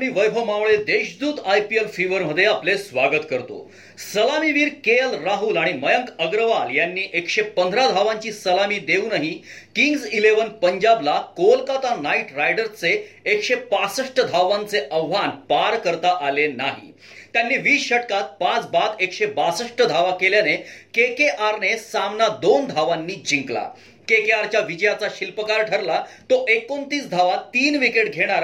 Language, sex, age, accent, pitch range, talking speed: Marathi, male, 40-59, native, 195-260 Hz, 65 wpm